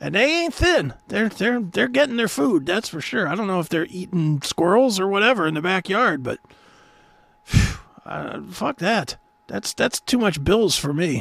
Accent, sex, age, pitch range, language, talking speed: American, male, 40-59, 150-220 Hz, English, 200 wpm